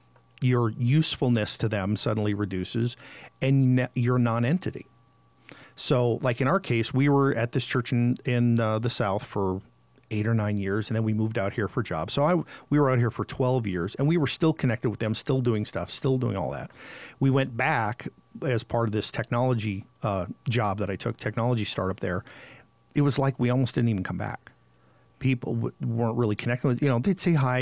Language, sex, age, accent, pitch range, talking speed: English, male, 50-69, American, 110-135 Hz, 205 wpm